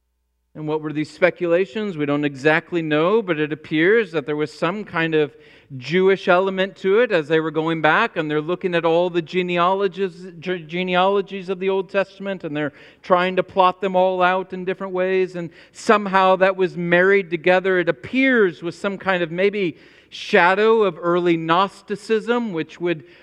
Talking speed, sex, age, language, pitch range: 180 wpm, male, 40-59, English, 155-195 Hz